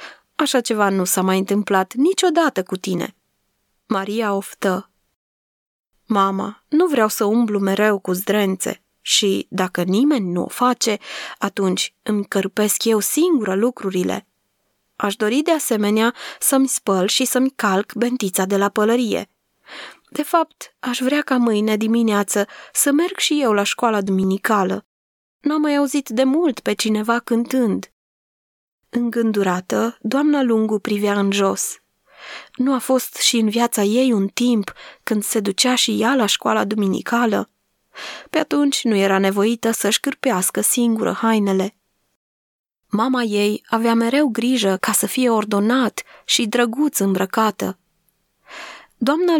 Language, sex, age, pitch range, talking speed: Romanian, female, 20-39, 200-255 Hz, 135 wpm